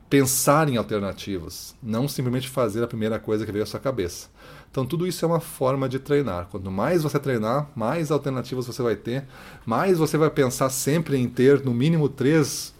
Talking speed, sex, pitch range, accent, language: 190 wpm, male, 105-135 Hz, Brazilian, Portuguese